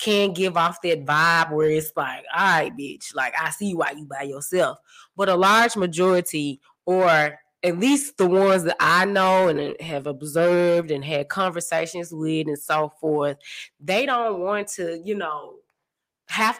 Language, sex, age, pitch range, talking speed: English, female, 20-39, 160-205 Hz, 170 wpm